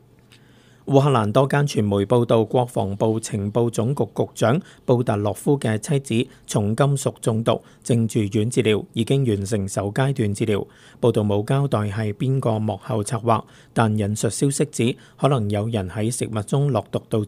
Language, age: Chinese, 50-69